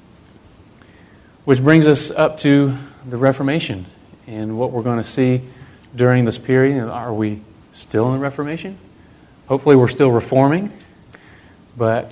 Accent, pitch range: American, 115-130 Hz